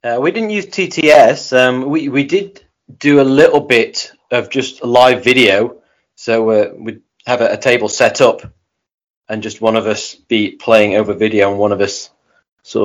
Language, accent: English, British